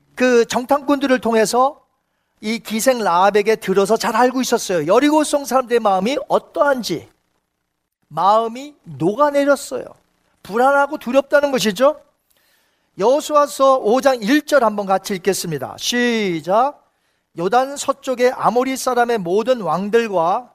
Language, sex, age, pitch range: Korean, male, 40-59, 215-280 Hz